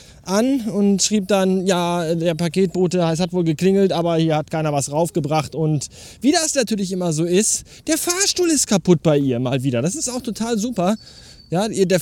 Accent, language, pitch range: German, German, 150-205 Hz